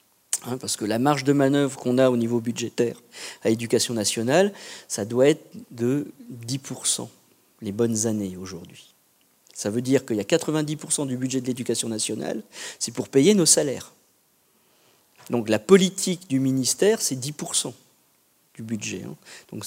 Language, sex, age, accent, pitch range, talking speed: French, male, 50-69, French, 125-170 Hz, 155 wpm